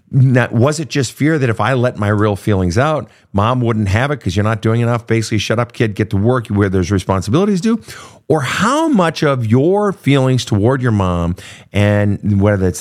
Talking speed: 205 wpm